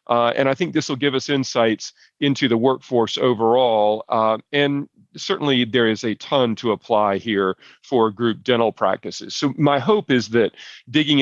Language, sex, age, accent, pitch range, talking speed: English, male, 40-59, American, 105-130 Hz, 175 wpm